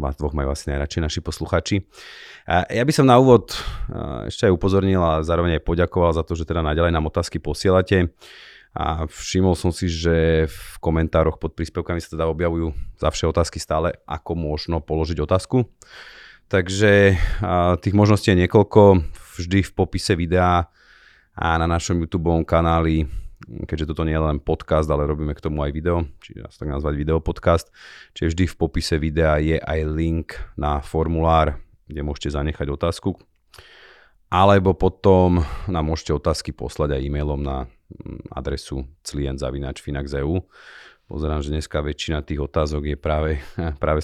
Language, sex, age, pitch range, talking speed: Slovak, male, 30-49, 75-90 Hz, 150 wpm